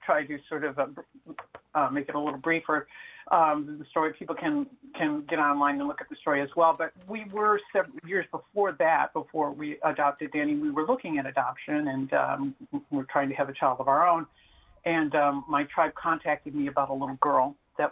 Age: 50-69